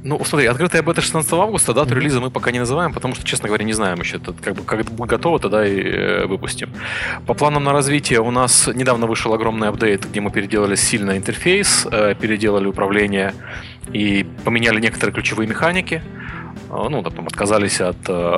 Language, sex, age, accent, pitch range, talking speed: Russian, male, 20-39, native, 100-130 Hz, 165 wpm